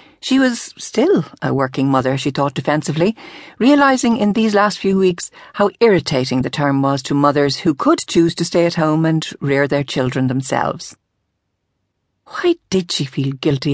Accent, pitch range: Irish, 140-200 Hz